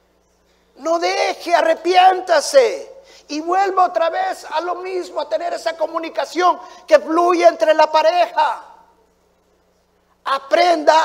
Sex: male